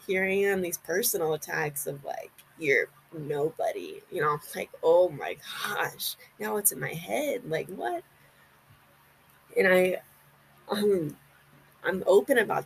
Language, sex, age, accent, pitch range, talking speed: English, female, 20-39, American, 180-225 Hz, 135 wpm